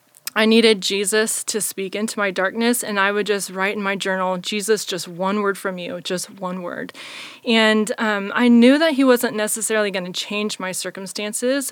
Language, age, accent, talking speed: English, 20-39, American, 195 wpm